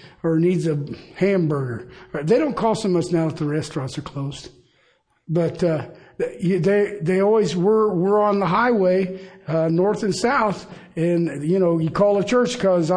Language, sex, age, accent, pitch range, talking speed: English, male, 50-69, American, 155-195 Hz, 170 wpm